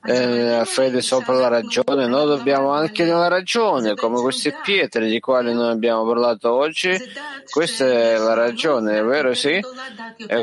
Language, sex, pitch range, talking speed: Italian, male, 120-160 Hz, 160 wpm